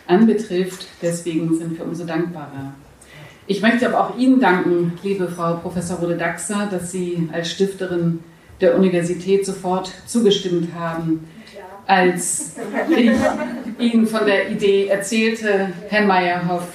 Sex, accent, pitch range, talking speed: female, German, 175-210 Hz, 120 wpm